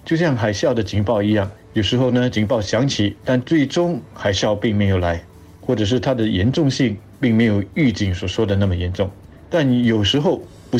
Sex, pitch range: male, 100-125 Hz